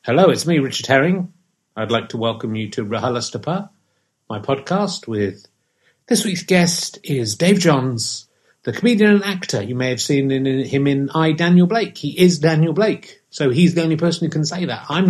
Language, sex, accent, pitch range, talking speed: English, male, British, 120-165 Hz, 195 wpm